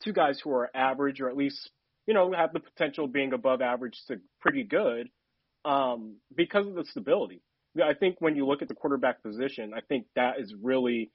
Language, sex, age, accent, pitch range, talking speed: English, male, 30-49, American, 125-150 Hz, 210 wpm